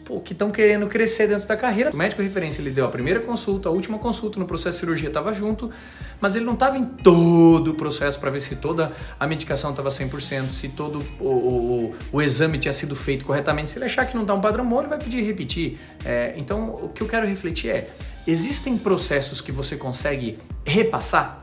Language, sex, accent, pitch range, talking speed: Portuguese, male, Brazilian, 140-190 Hz, 220 wpm